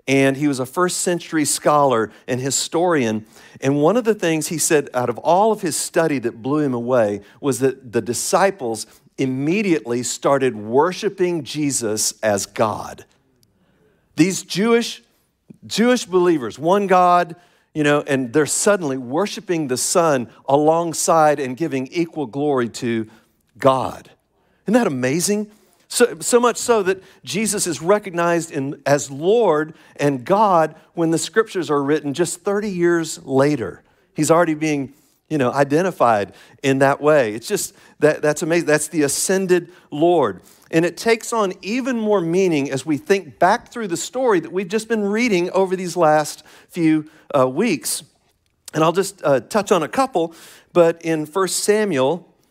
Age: 50-69